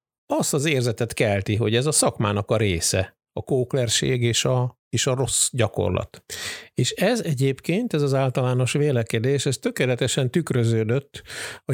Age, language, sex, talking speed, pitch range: 50-69, Hungarian, male, 150 wpm, 110-140 Hz